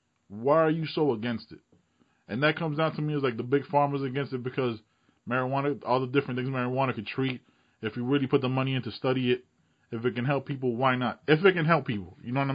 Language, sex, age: English, male, 20-39